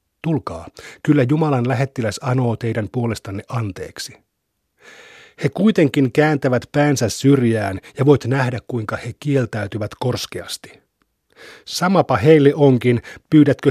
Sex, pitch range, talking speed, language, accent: male, 115-140 Hz, 105 wpm, Finnish, native